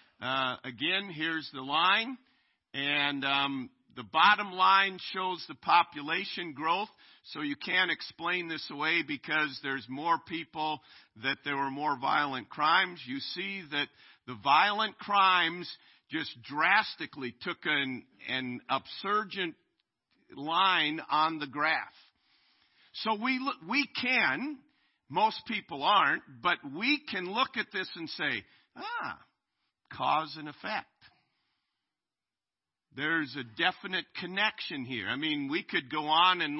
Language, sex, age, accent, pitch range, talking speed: English, male, 50-69, American, 150-210 Hz, 130 wpm